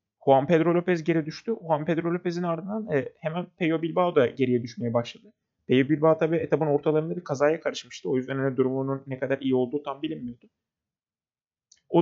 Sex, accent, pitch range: male, native, 135-180 Hz